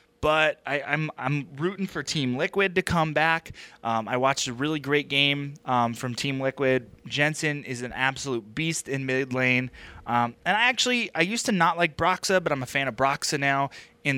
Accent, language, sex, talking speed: American, English, male, 205 wpm